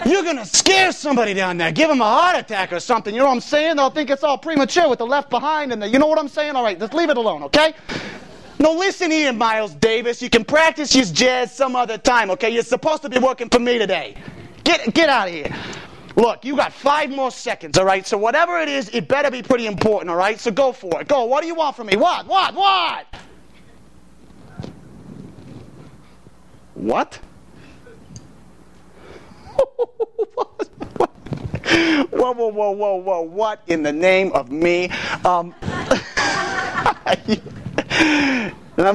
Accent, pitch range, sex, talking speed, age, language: American, 195-305 Hz, male, 180 wpm, 30-49, English